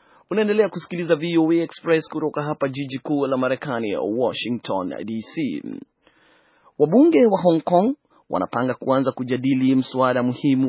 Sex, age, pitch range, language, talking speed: male, 30-49, 125-150 Hz, Swahili, 120 wpm